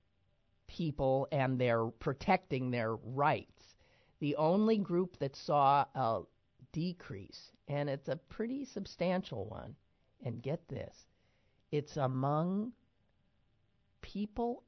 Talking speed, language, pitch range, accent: 100 wpm, English, 115-150 Hz, American